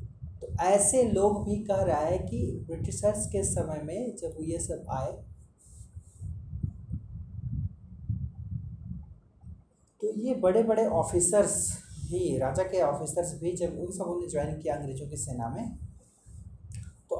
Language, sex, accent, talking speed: Hindi, male, native, 120 wpm